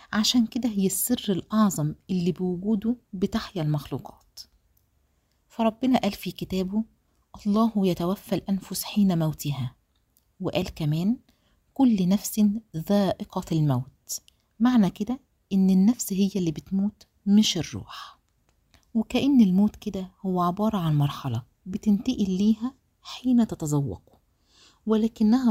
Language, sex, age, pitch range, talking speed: Arabic, female, 40-59, 165-220 Hz, 105 wpm